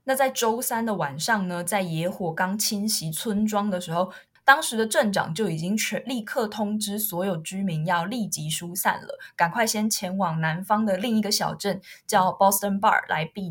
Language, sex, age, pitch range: Chinese, female, 20-39, 180-225 Hz